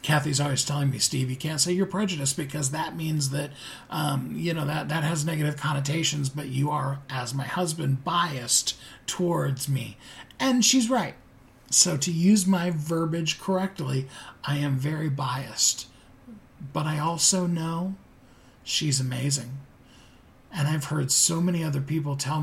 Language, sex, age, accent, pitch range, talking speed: English, male, 40-59, American, 130-155 Hz, 155 wpm